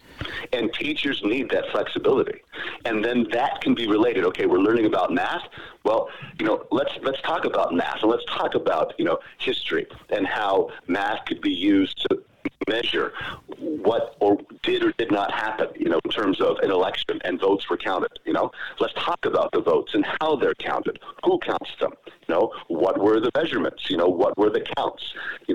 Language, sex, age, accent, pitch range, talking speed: English, male, 40-59, American, 335-445 Hz, 195 wpm